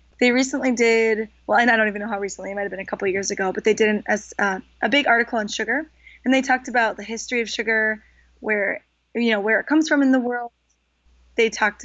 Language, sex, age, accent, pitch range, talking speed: English, female, 20-39, American, 205-260 Hz, 255 wpm